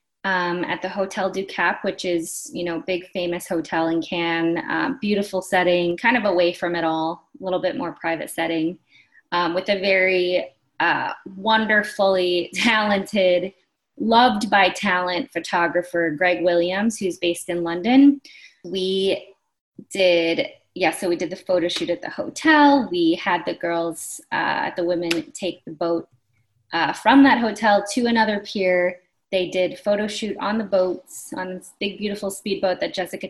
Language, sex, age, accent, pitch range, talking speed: English, female, 20-39, American, 175-205 Hz, 160 wpm